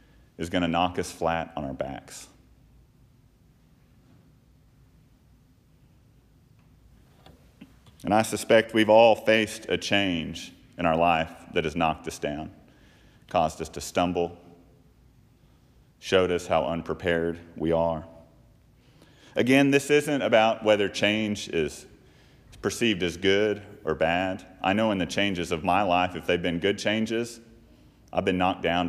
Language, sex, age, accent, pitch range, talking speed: English, male, 40-59, American, 85-110 Hz, 130 wpm